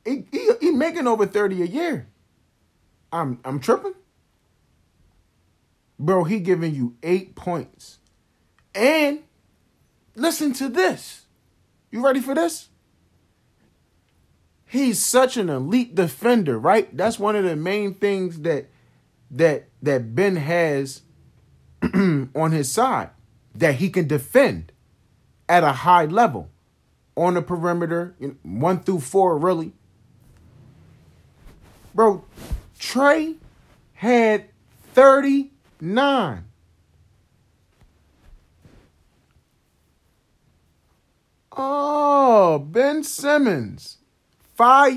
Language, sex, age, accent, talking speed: English, male, 30-49, American, 95 wpm